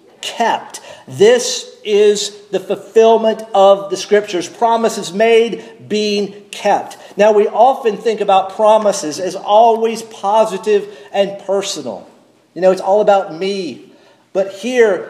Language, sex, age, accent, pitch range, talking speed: English, male, 50-69, American, 175-220 Hz, 125 wpm